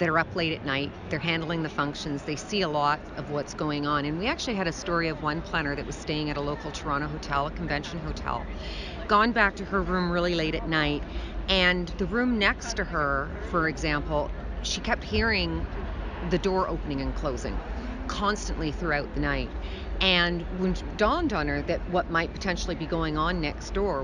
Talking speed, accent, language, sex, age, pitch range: 200 wpm, American, English, female, 40-59, 150-185 Hz